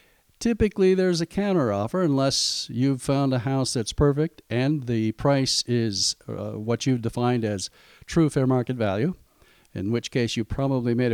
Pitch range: 115-150 Hz